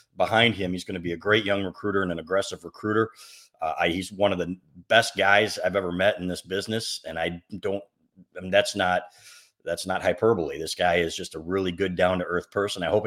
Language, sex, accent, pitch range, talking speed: English, male, American, 90-105 Hz, 225 wpm